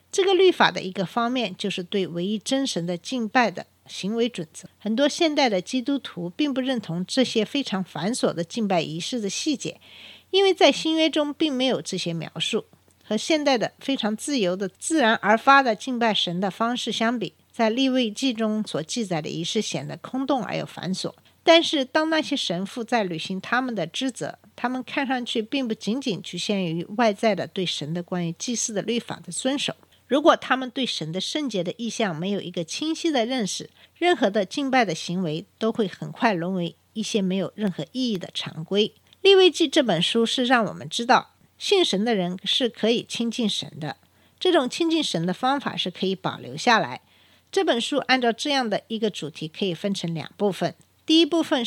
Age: 50-69